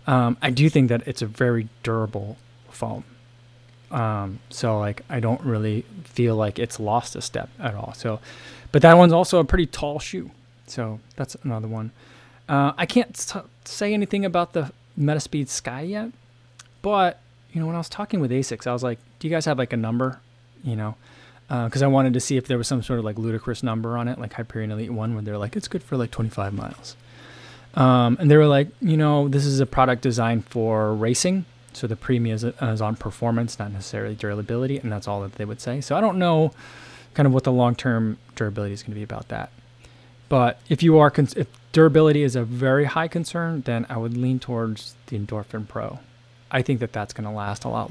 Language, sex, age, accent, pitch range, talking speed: English, male, 20-39, American, 115-140 Hz, 220 wpm